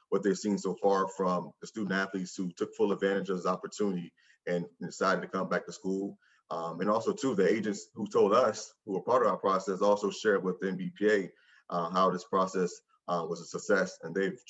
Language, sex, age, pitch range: English, male, 30-49, 90-100 Hz